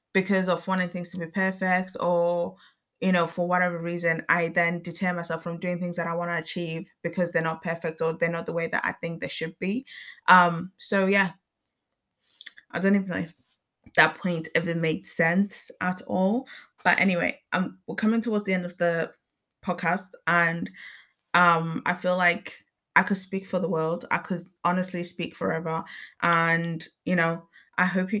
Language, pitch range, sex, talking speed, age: English, 170-190 Hz, female, 185 wpm, 20-39